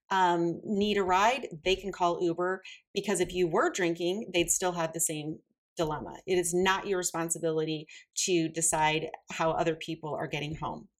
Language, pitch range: English, 170-210 Hz